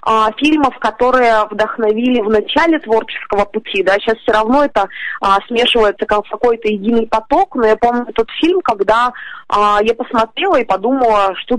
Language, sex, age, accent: Russian, female, 20-39, native